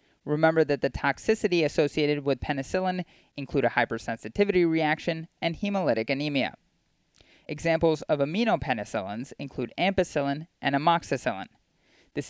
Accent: American